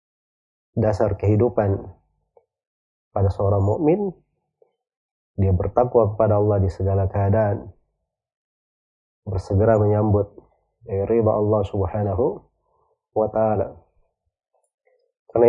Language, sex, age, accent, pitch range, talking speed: Indonesian, male, 30-49, native, 100-120 Hz, 80 wpm